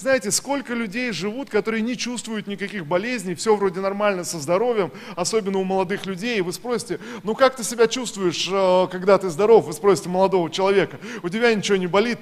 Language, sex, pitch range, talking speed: Russian, male, 190-225 Hz, 180 wpm